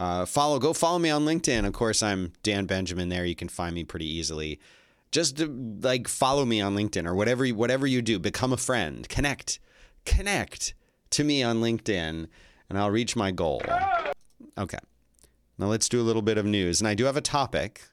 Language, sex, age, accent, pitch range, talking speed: English, male, 30-49, American, 90-130 Hz, 195 wpm